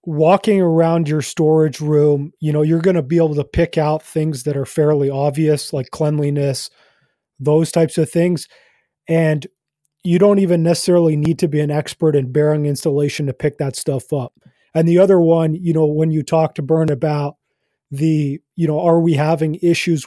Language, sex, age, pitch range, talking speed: English, male, 30-49, 145-165 Hz, 190 wpm